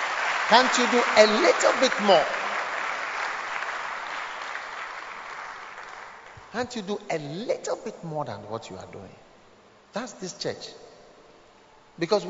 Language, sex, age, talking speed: English, male, 50-69, 110 wpm